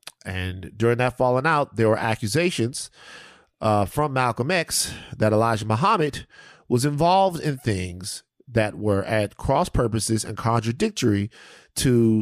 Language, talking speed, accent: English, 135 wpm, American